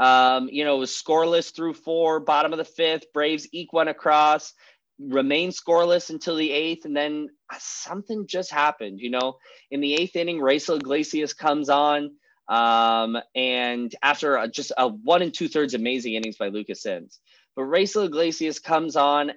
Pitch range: 120-160 Hz